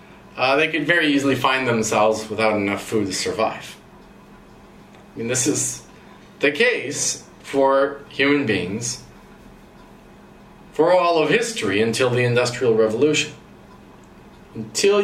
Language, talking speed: English, 120 wpm